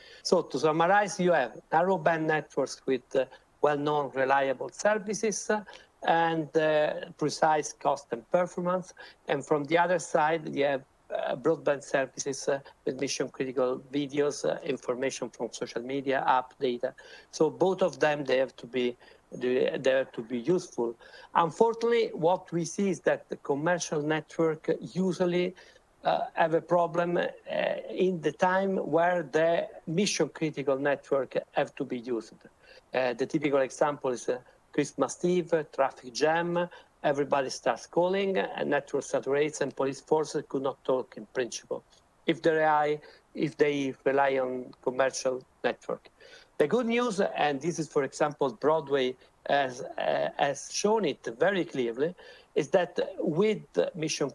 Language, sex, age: English, male, 60-79